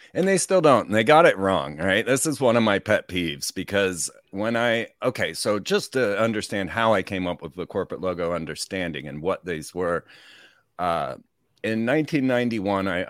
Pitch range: 85-110 Hz